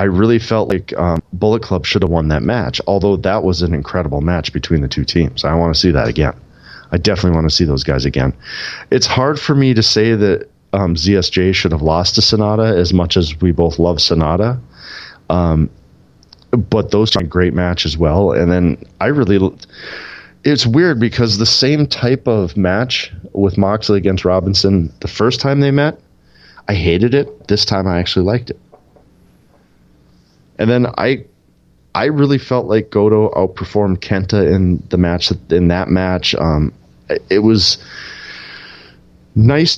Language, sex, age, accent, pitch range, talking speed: English, male, 30-49, American, 85-105 Hz, 175 wpm